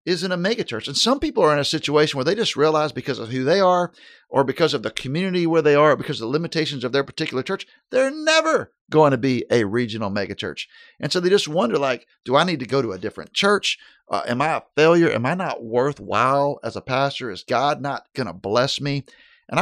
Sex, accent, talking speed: male, American, 240 wpm